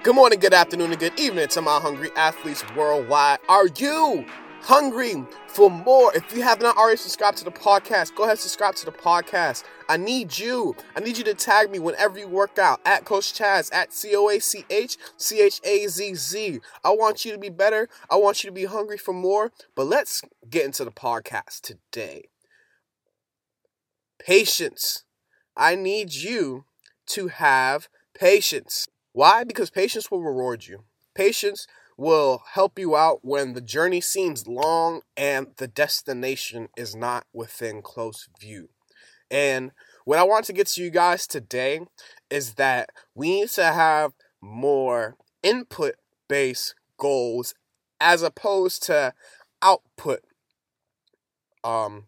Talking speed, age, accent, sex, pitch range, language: 145 wpm, 20-39, American, male, 140-220 Hz, English